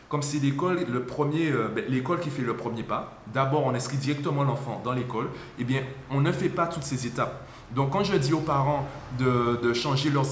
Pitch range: 120-145 Hz